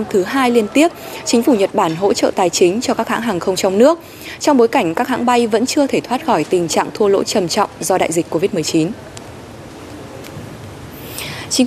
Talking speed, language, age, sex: 210 wpm, Vietnamese, 20-39, female